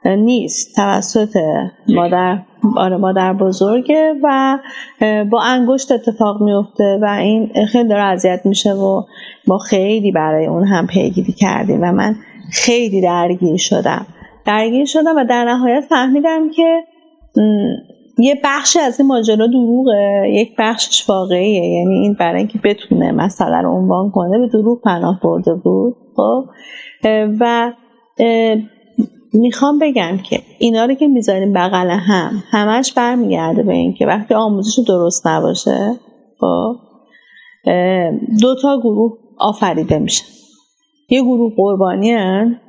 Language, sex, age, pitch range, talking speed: Persian, female, 30-49, 200-245 Hz, 125 wpm